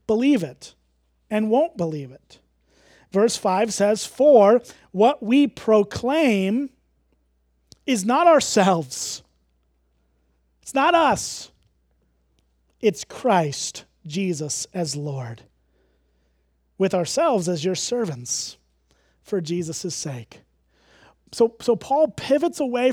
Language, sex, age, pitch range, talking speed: English, male, 30-49, 170-240 Hz, 95 wpm